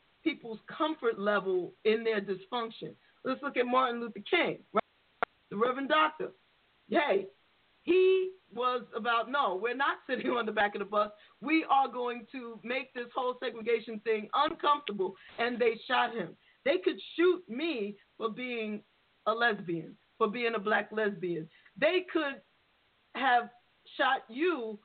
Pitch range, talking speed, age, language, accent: 220-310 Hz, 150 wpm, 40-59, English, American